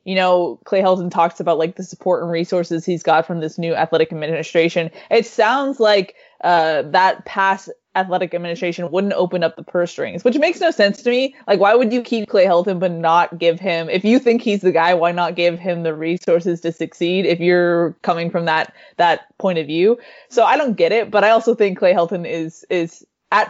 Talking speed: 220 wpm